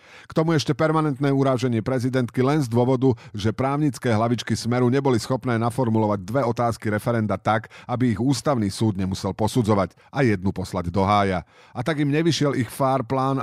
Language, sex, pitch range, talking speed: Slovak, male, 110-140 Hz, 170 wpm